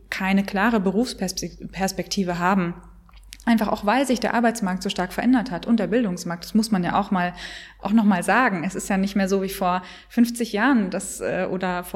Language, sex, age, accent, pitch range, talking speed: German, female, 20-39, German, 190-225 Hz, 200 wpm